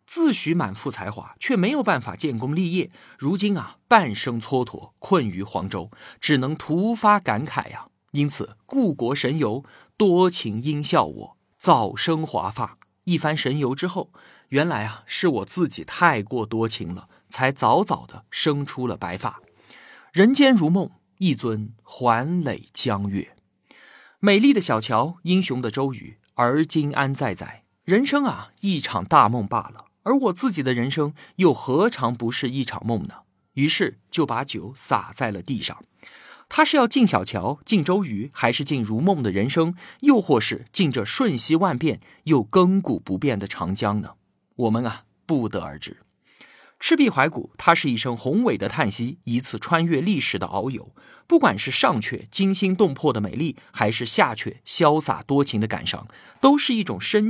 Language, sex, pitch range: Chinese, male, 115-180 Hz